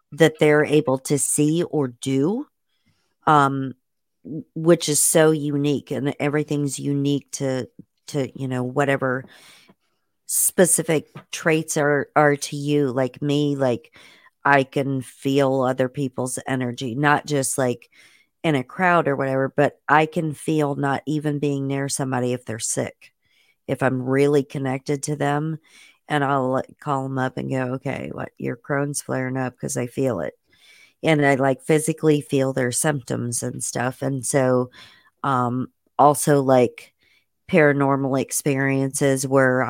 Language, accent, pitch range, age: English, American, 130-145 Hz, 40-59